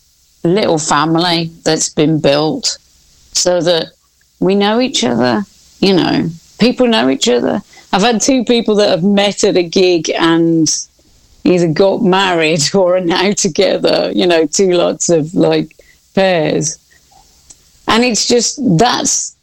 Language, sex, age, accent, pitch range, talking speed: English, female, 40-59, British, 145-185 Hz, 140 wpm